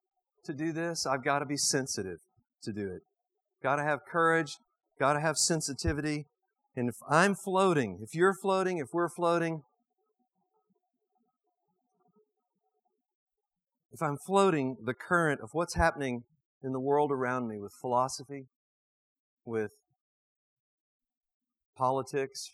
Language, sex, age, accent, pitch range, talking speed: English, male, 40-59, American, 130-195 Hz, 120 wpm